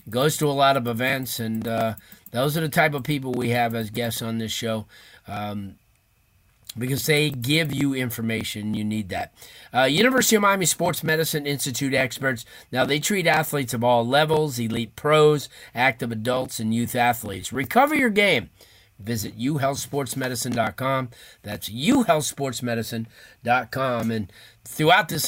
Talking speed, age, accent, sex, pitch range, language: 145 wpm, 40-59, American, male, 115-145 Hz, English